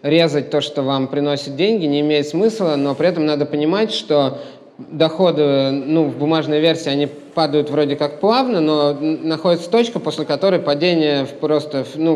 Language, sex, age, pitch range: Russian, male, 20-39, 135-165 Hz